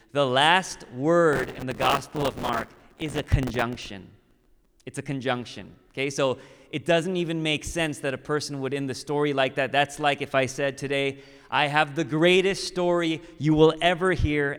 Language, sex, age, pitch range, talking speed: English, male, 30-49, 130-160 Hz, 185 wpm